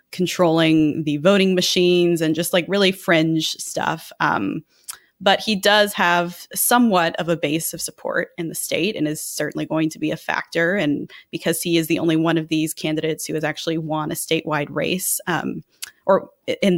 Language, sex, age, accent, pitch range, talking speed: English, female, 20-39, American, 165-200 Hz, 185 wpm